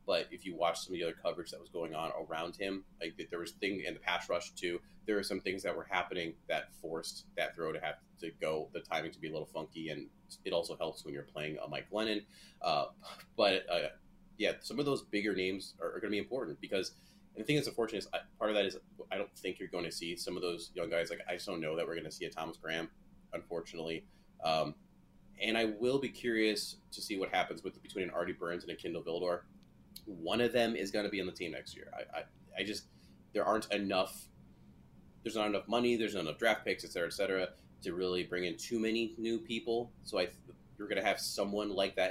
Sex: male